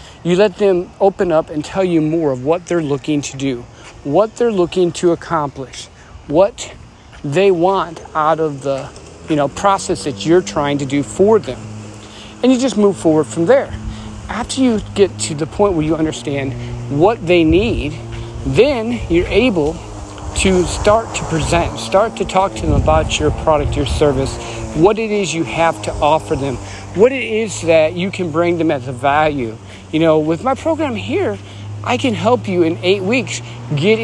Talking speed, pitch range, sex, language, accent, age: 180 wpm, 125-190 Hz, male, English, American, 50-69